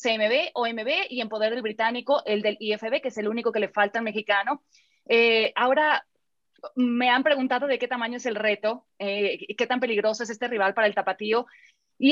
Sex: female